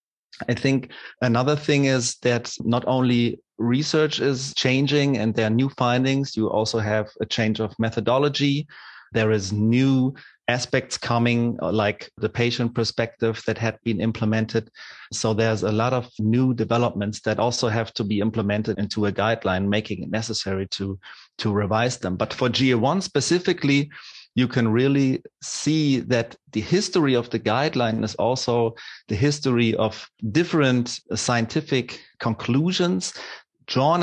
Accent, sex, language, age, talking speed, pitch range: German, male, English, 30-49, 145 wpm, 110-135 Hz